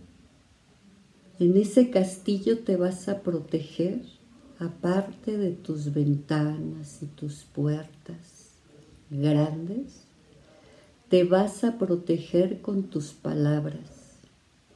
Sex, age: female, 50-69